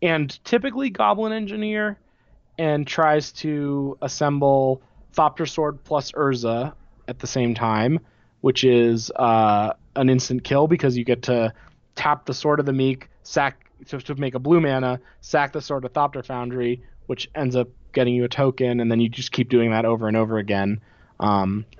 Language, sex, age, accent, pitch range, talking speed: English, male, 20-39, American, 115-145 Hz, 175 wpm